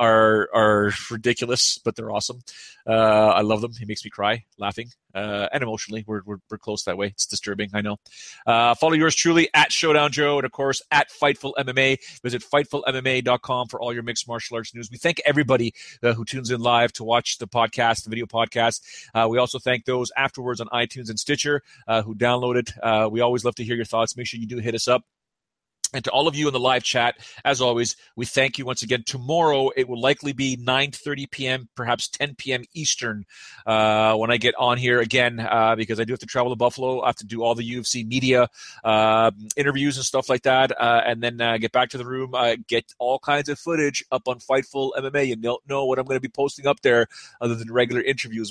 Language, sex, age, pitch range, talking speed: English, male, 30-49, 110-130 Hz, 230 wpm